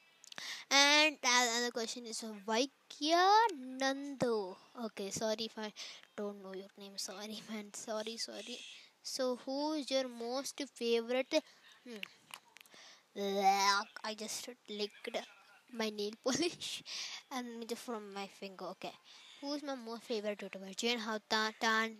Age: 10-29